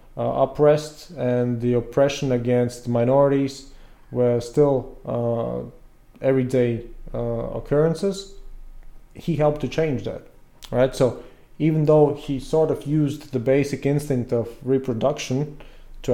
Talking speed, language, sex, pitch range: 120 wpm, English, male, 120-145 Hz